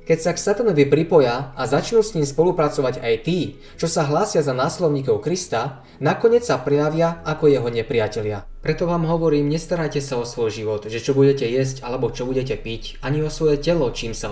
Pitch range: 120-155 Hz